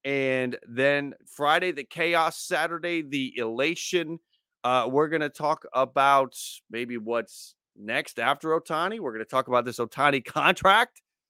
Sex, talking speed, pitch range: male, 145 wpm, 130-170 Hz